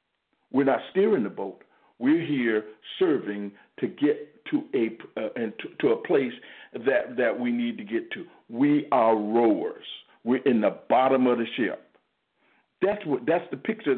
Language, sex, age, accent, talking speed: English, male, 60-79, American, 170 wpm